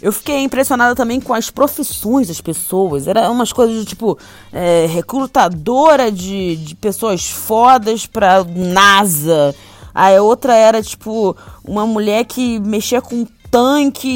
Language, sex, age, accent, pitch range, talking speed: Portuguese, female, 20-39, Brazilian, 185-240 Hz, 125 wpm